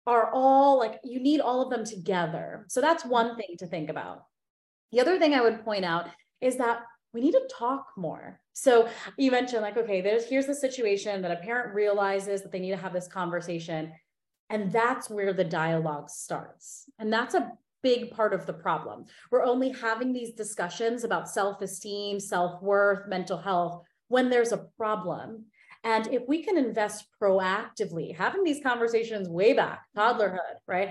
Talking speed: 175 wpm